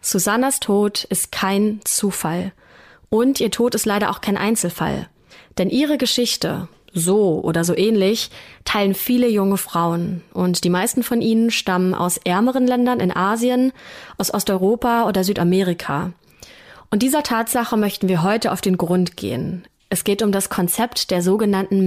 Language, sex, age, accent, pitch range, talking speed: German, female, 20-39, German, 180-230 Hz, 155 wpm